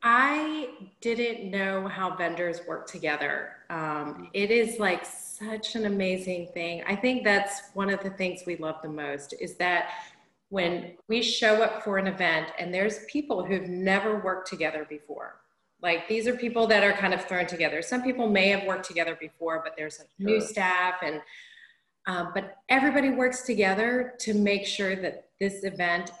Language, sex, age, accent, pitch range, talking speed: English, female, 30-49, American, 175-220 Hz, 175 wpm